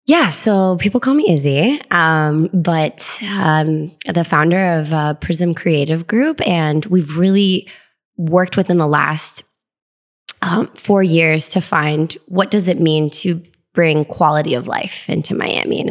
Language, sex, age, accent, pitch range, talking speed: English, female, 20-39, American, 155-195 Hz, 155 wpm